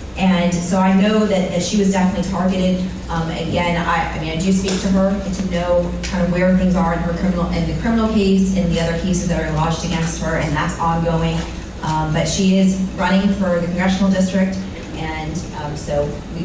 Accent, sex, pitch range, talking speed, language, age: American, female, 175-220 Hz, 215 wpm, English, 30-49